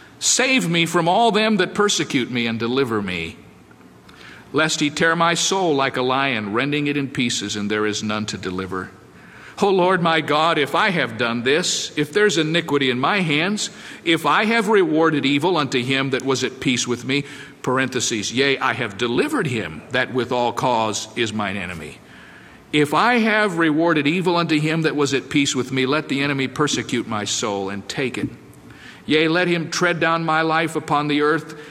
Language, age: English, 50-69